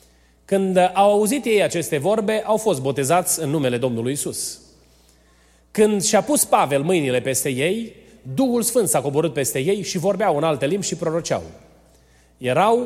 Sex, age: male, 30-49